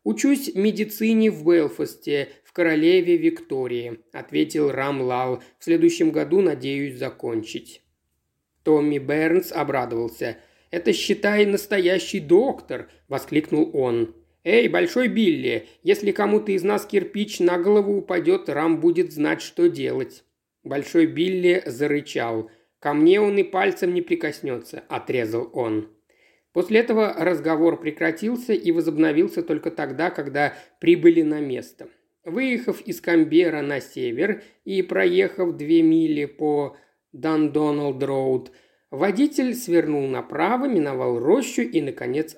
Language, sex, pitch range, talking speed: Russian, male, 145-245 Hz, 115 wpm